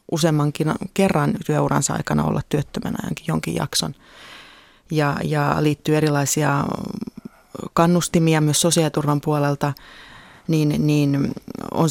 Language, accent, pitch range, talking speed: Finnish, native, 145-165 Hz, 95 wpm